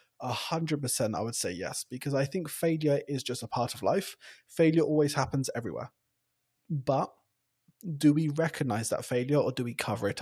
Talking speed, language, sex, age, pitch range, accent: 190 wpm, English, male, 20-39, 130-150 Hz, British